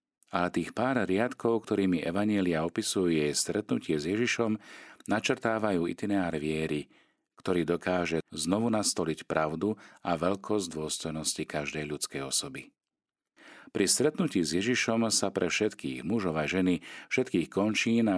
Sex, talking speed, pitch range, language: male, 120 wpm, 80-105 Hz, Slovak